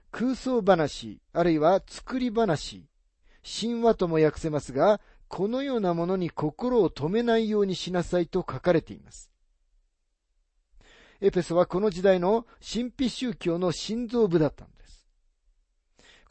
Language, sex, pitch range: Japanese, male, 130-205 Hz